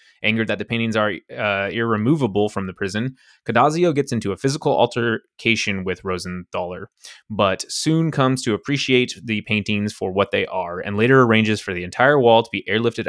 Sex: male